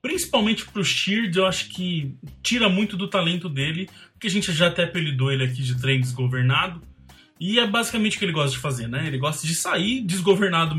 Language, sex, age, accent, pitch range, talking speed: Portuguese, male, 20-39, Brazilian, 145-205 Hz, 205 wpm